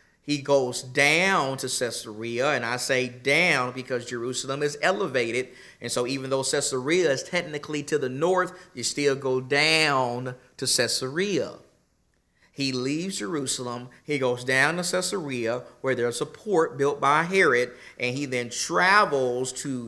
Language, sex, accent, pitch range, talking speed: English, male, American, 120-155 Hz, 150 wpm